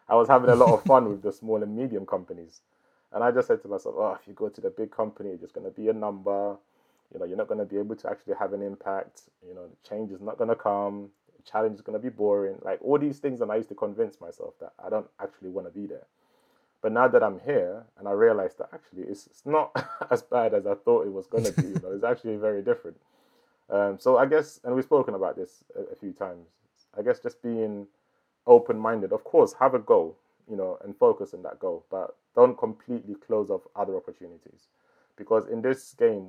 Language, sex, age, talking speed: English, male, 20-39, 250 wpm